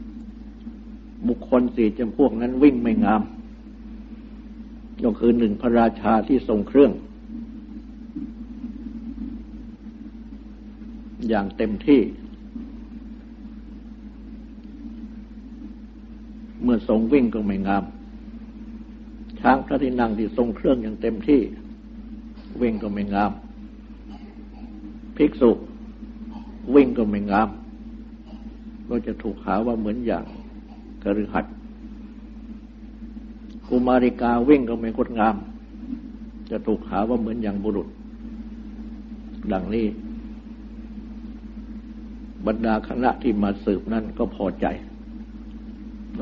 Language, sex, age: Thai, male, 60-79